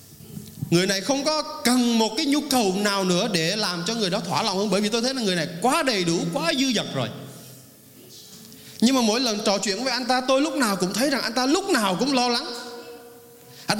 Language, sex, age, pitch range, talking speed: Vietnamese, male, 20-39, 190-260 Hz, 245 wpm